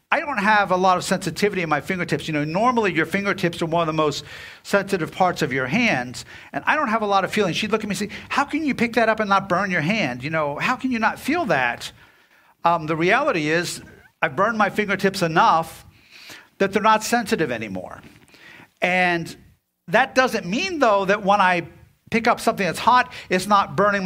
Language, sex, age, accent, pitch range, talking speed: English, male, 50-69, American, 160-220 Hz, 220 wpm